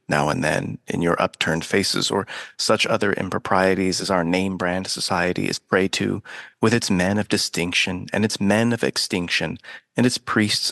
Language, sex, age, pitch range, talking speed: English, male, 30-49, 95-115 Hz, 175 wpm